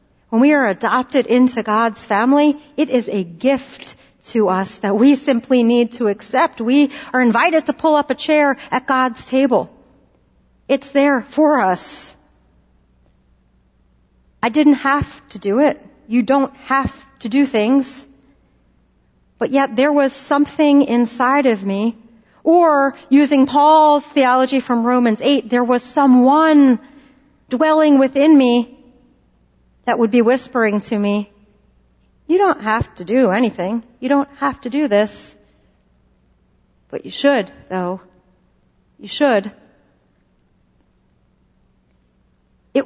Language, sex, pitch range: English, female, 220-280 Hz